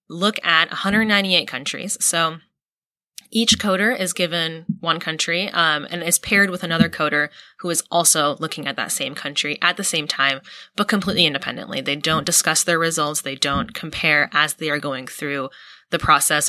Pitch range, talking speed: 150-190 Hz, 175 wpm